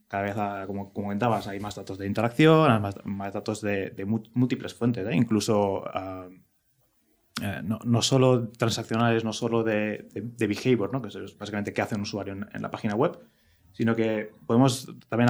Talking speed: 190 wpm